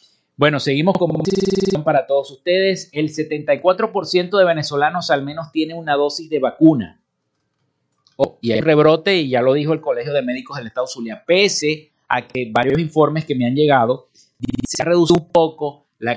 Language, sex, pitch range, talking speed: Spanish, male, 130-170 Hz, 180 wpm